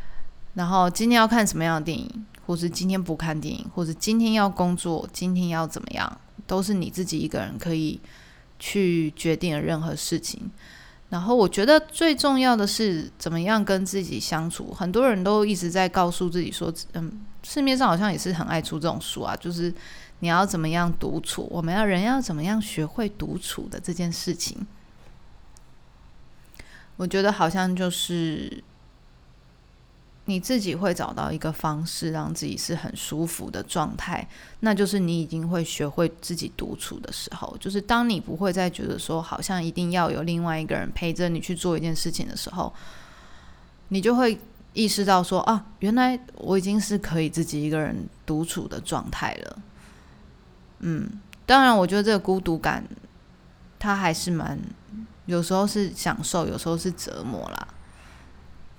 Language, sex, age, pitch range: Chinese, female, 20-39, 160-200 Hz